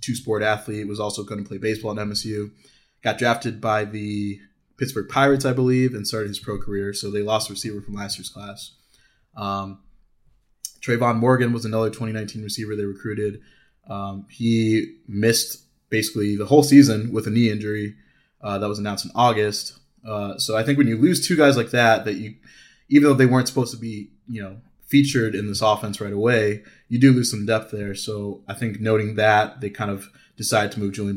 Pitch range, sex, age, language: 105-120 Hz, male, 20-39, English